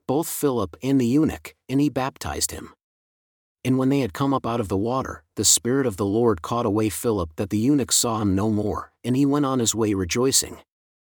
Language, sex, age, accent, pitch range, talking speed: English, male, 50-69, American, 100-135 Hz, 225 wpm